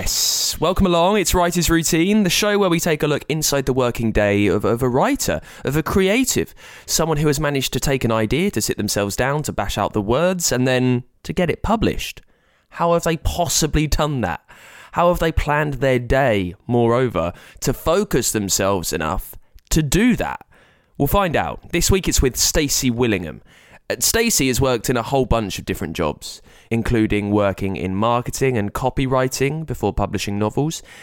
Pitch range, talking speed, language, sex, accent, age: 105-145 Hz, 185 wpm, English, male, British, 20-39